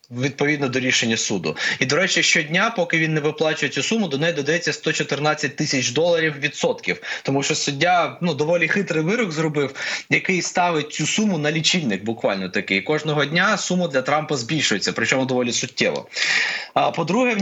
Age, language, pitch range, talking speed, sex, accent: 20-39, Ukrainian, 145-180 Hz, 170 wpm, male, native